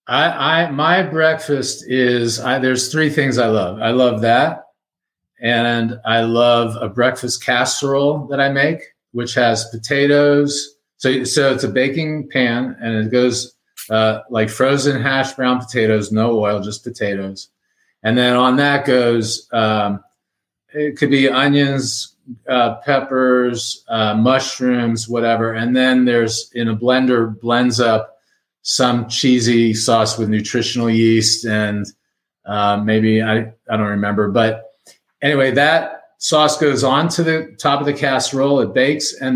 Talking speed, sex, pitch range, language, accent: 145 wpm, male, 110-135 Hz, English, American